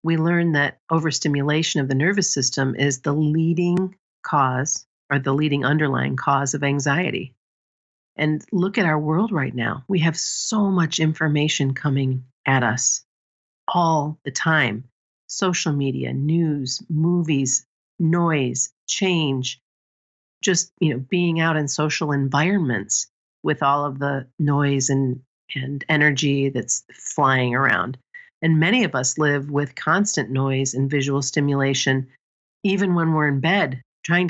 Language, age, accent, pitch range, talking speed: English, 50-69, American, 135-160 Hz, 140 wpm